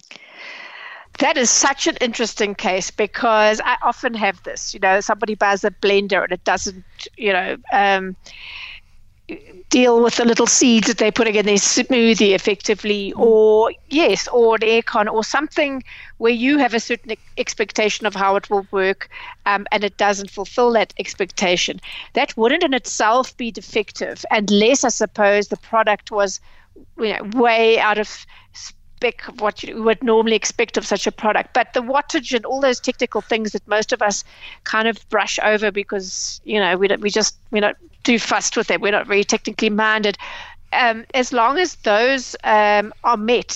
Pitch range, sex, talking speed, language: 210-250 Hz, female, 180 wpm, English